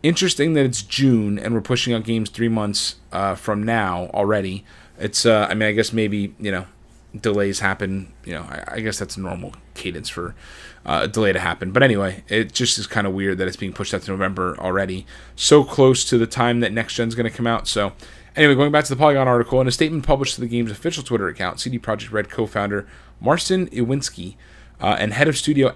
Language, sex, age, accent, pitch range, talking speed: English, male, 30-49, American, 100-130 Hz, 230 wpm